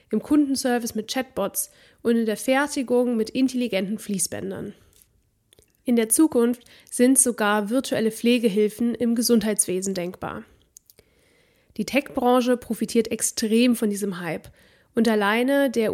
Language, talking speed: German, 115 wpm